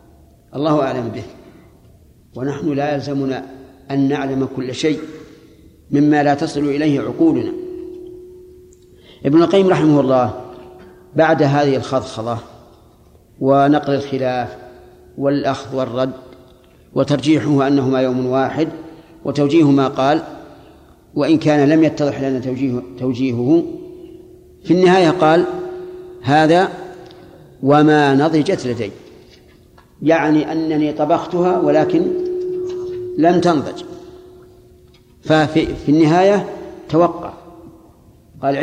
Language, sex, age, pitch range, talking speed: Arabic, male, 50-69, 135-190 Hz, 90 wpm